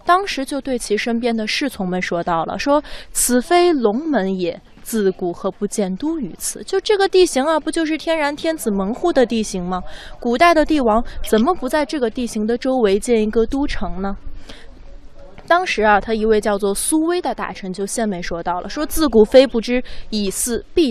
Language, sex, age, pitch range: Chinese, female, 20-39, 200-280 Hz